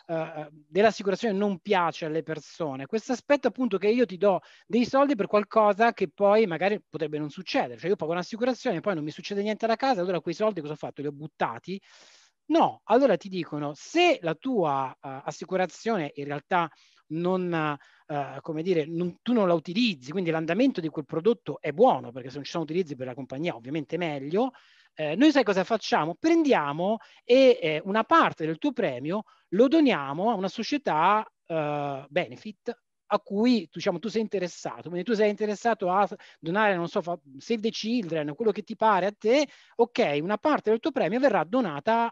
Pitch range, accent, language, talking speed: 160-225 Hz, native, Italian, 190 wpm